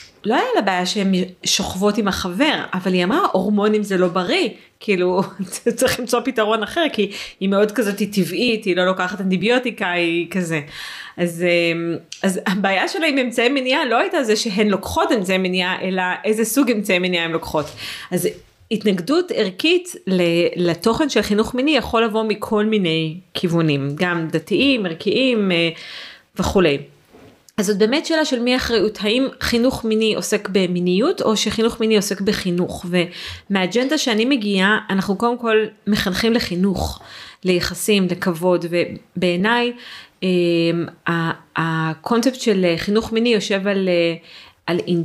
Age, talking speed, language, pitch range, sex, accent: 30-49, 115 wpm, Hebrew, 180-225 Hz, female, native